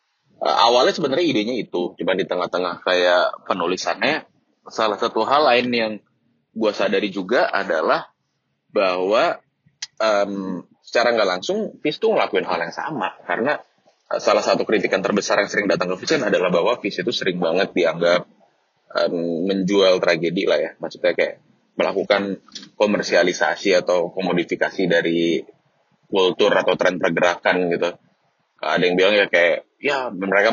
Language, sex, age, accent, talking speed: Indonesian, male, 20-39, native, 140 wpm